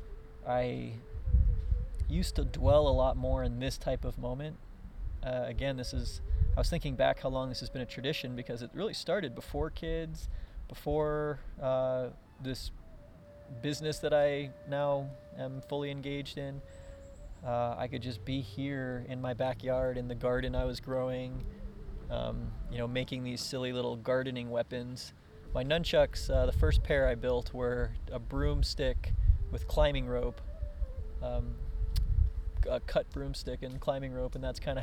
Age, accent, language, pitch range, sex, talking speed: 20-39, American, English, 80-130 Hz, male, 160 wpm